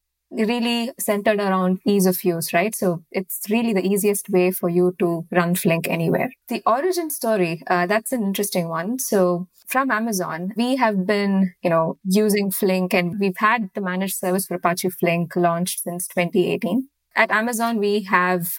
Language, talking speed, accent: English, 170 wpm, Indian